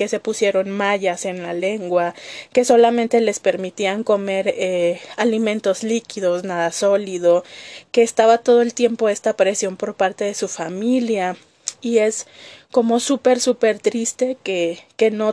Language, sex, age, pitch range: Spanish, female, 20-39, 190-240 Hz